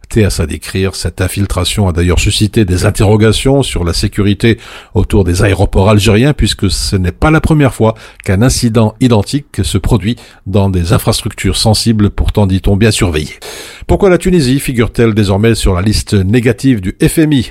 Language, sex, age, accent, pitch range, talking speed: French, male, 50-69, French, 95-120 Hz, 155 wpm